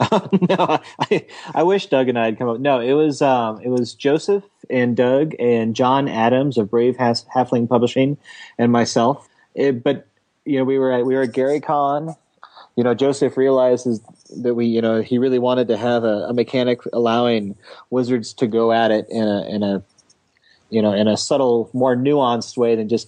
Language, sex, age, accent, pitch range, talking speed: English, male, 30-49, American, 110-130 Hz, 200 wpm